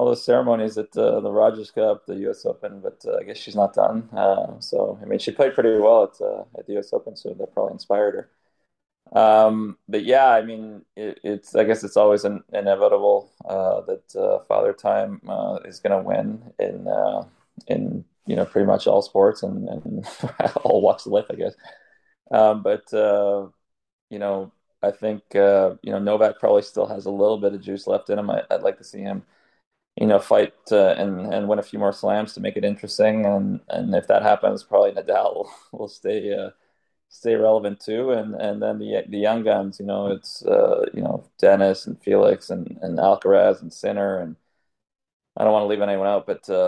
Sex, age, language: male, 20-39, English